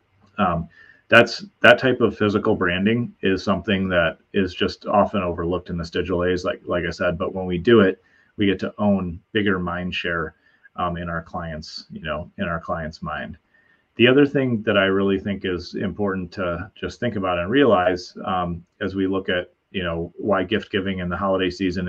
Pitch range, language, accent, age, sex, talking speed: 90-105 Hz, English, American, 30-49, male, 200 wpm